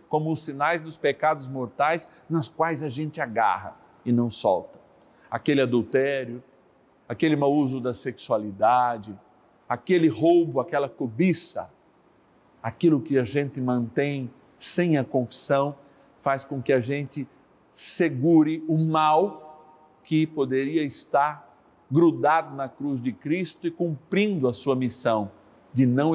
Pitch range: 130-175 Hz